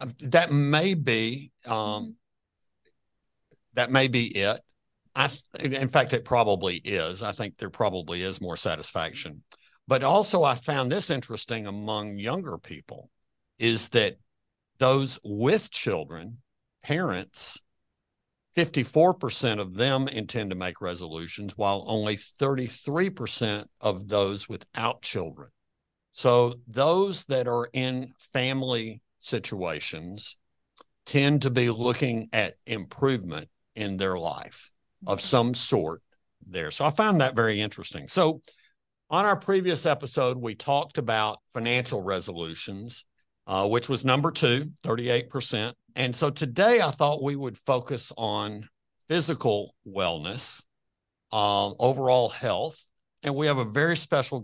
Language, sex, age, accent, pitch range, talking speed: English, male, 50-69, American, 105-135 Hz, 130 wpm